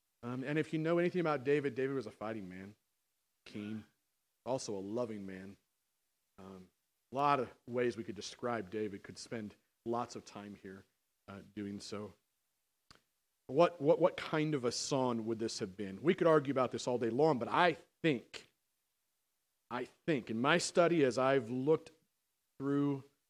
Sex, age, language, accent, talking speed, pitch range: male, 40-59, English, American, 175 wpm, 110-155 Hz